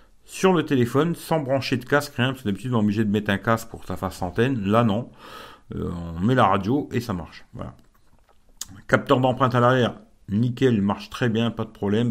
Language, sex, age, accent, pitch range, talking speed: French, male, 50-69, French, 105-130 Hz, 220 wpm